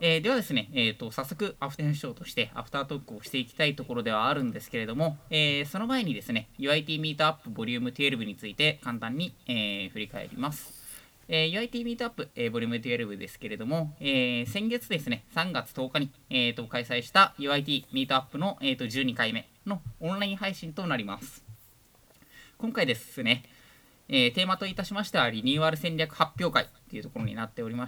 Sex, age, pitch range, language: male, 20-39, 120-160 Hz, Japanese